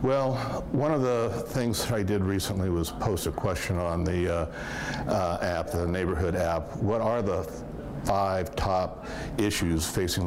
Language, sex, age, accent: English, male, 60-79, American